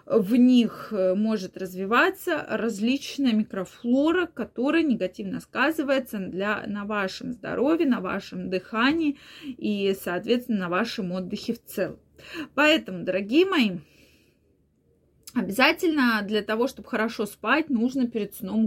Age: 20-39